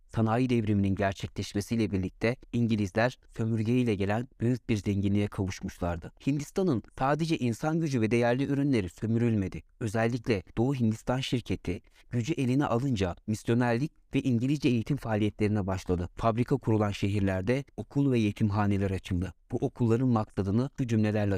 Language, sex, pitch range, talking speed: Turkish, male, 105-130 Hz, 120 wpm